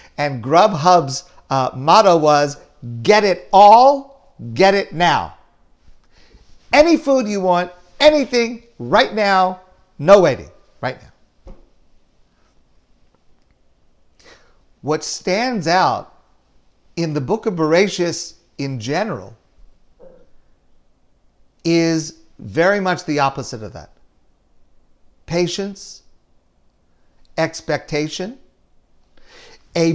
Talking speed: 85 wpm